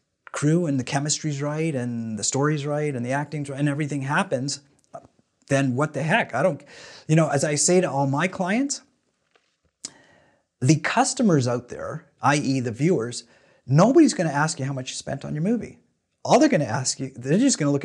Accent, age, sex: American, 30-49, male